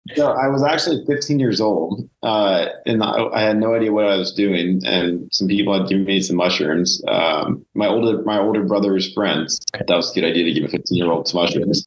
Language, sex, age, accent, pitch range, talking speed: English, male, 30-49, American, 90-105 Hz, 220 wpm